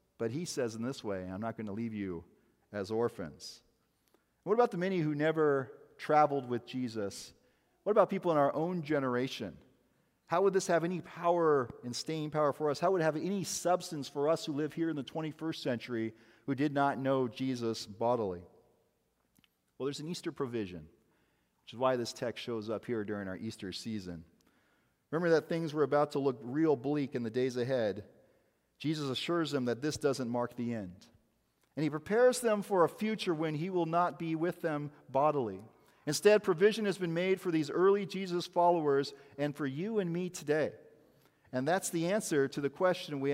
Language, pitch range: English, 130-175 Hz